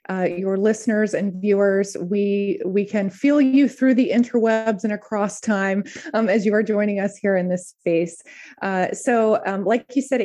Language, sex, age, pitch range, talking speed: English, female, 20-39, 190-230 Hz, 185 wpm